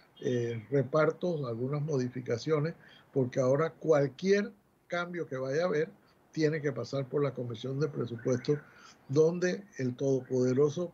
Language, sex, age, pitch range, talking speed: Spanish, male, 60-79, 130-160 Hz, 125 wpm